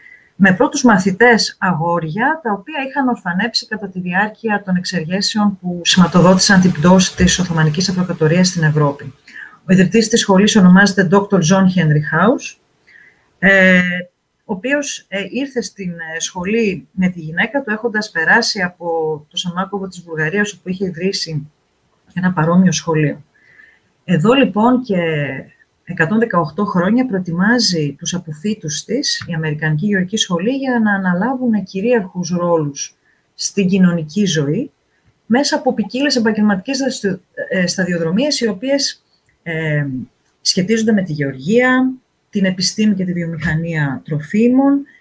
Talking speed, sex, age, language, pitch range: 125 wpm, female, 30-49, Greek, 170-225 Hz